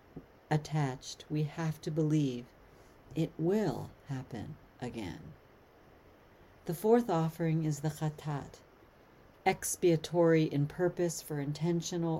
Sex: female